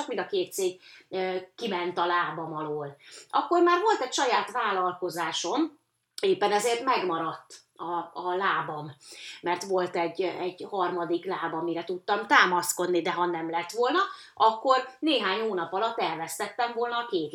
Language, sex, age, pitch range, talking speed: Hungarian, female, 30-49, 175-265 Hz, 145 wpm